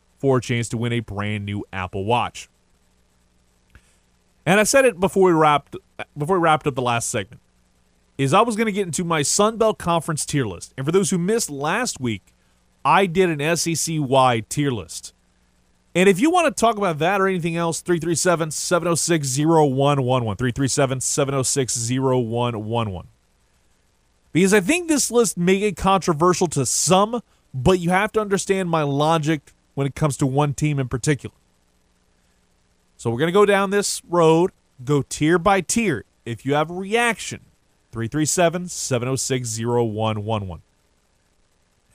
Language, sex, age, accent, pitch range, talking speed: English, male, 30-49, American, 110-175 Hz, 150 wpm